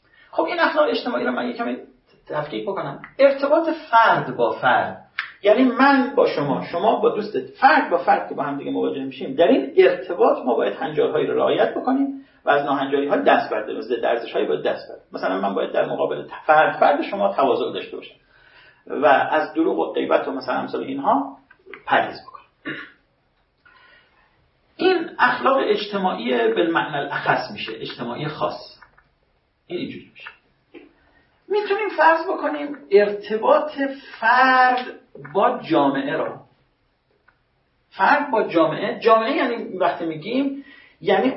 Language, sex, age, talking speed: Persian, male, 40-59, 135 wpm